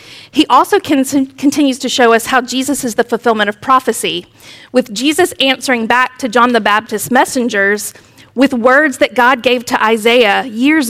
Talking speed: 165 wpm